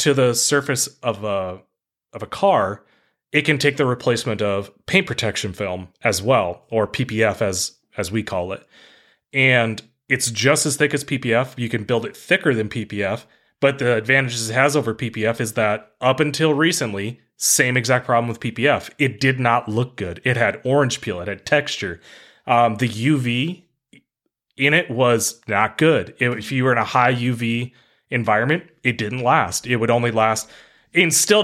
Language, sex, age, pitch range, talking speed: English, male, 30-49, 110-135 Hz, 180 wpm